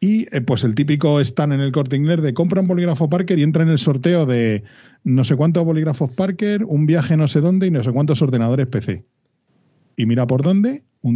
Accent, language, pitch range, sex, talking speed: Spanish, Spanish, 115-150 Hz, male, 225 wpm